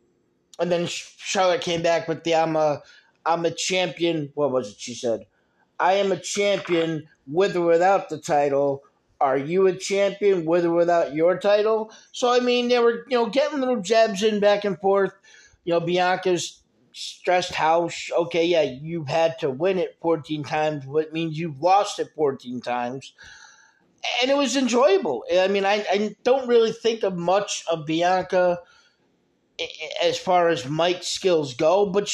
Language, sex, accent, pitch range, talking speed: English, male, American, 165-200 Hz, 170 wpm